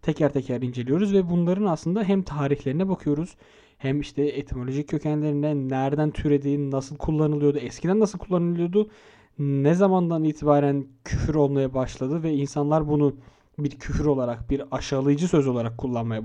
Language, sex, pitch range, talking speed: Turkish, male, 125-155 Hz, 135 wpm